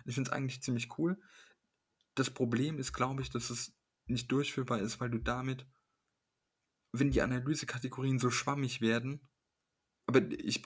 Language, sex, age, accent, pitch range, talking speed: German, male, 20-39, German, 115-135 Hz, 150 wpm